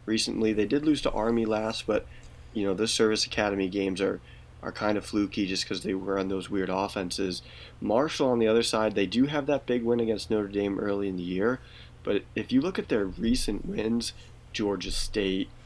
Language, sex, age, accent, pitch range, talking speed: English, male, 30-49, American, 95-110 Hz, 210 wpm